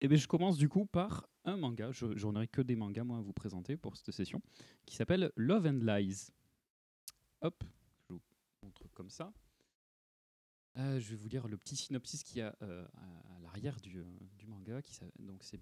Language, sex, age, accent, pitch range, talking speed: French, male, 30-49, French, 105-140 Hz, 210 wpm